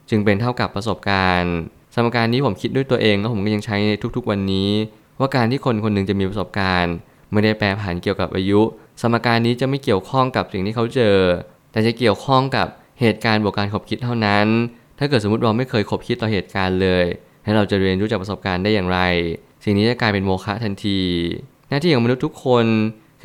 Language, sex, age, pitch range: Thai, male, 20-39, 100-120 Hz